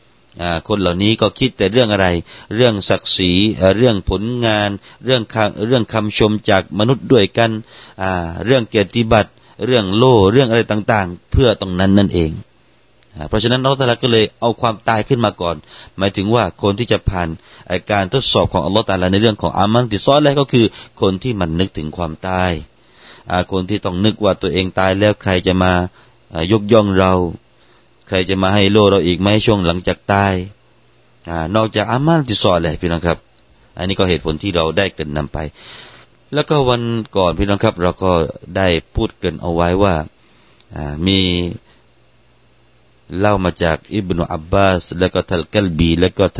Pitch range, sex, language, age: 90-110 Hz, male, Thai, 30-49